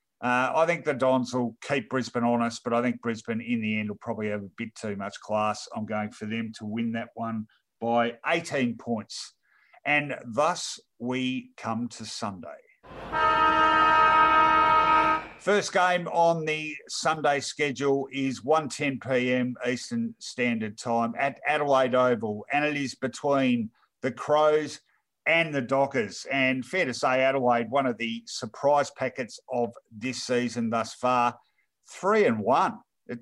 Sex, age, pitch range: male, 50-69, 115-135 Hz